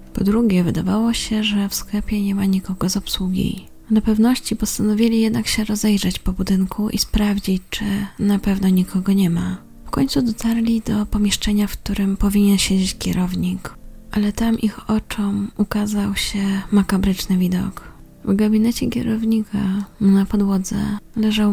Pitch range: 190-215 Hz